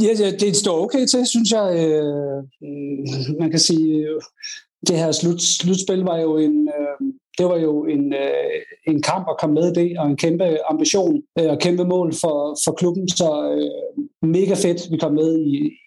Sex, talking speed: male, 170 wpm